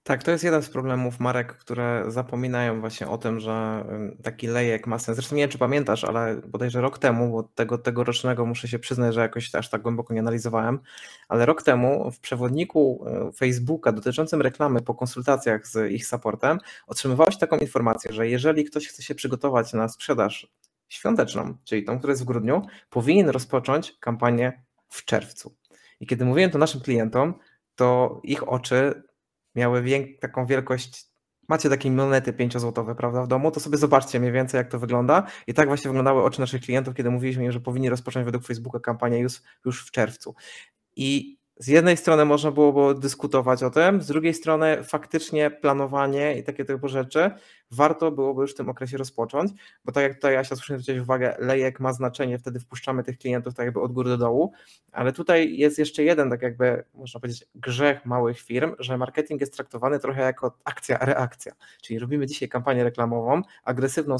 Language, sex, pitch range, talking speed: Polish, male, 120-140 Hz, 180 wpm